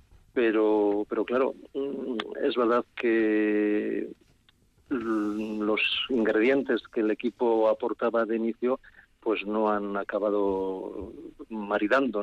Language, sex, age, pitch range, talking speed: Spanish, male, 40-59, 105-115 Hz, 95 wpm